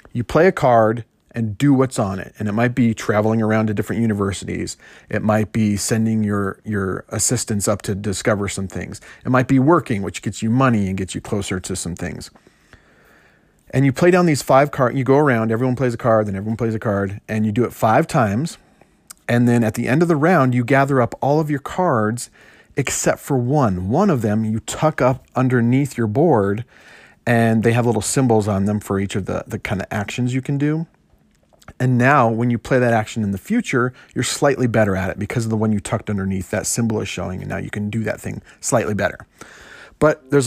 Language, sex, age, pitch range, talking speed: English, male, 40-59, 105-130 Hz, 225 wpm